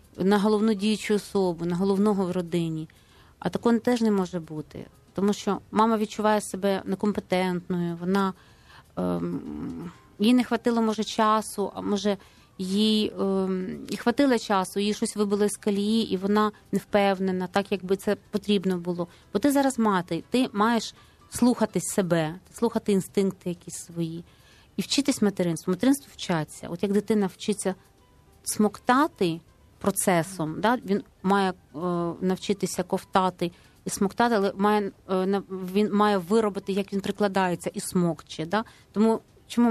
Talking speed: 140 wpm